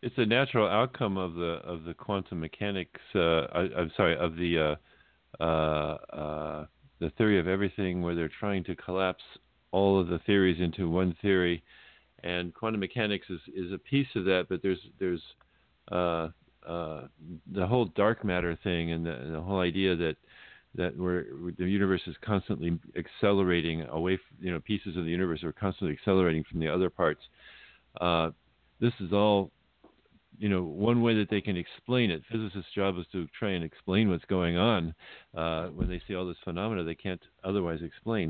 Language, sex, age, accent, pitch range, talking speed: English, male, 50-69, American, 85-100 Hz, 185 wpm